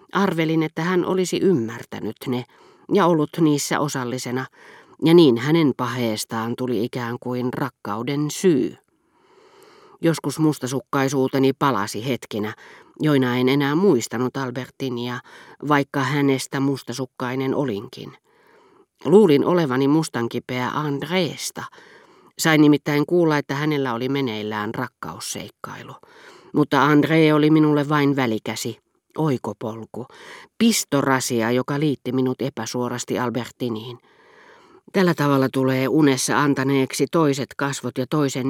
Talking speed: 105 wpm